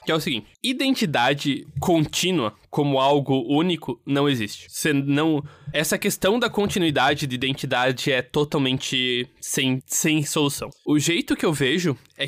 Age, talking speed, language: 20-39, 145 wpm, Portuguese